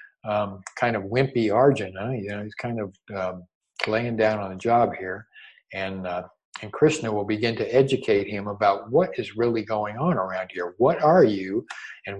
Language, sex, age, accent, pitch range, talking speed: English, male, 50-69, American, 95-120 Hz, 185 wpm